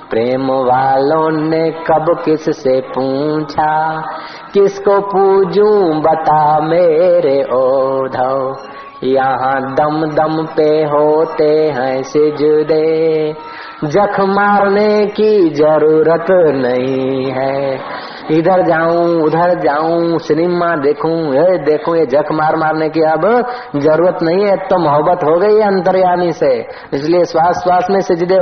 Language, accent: Hindi, native